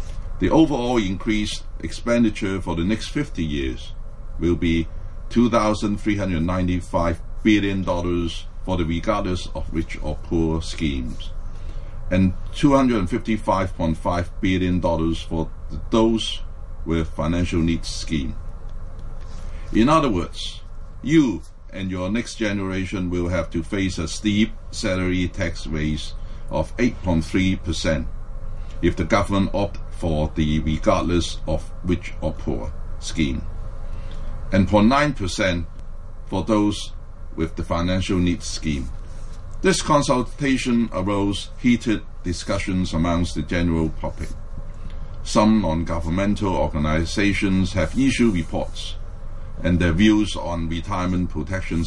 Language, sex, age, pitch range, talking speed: English, male, 60-79, 80-100 Hz, 110 wpm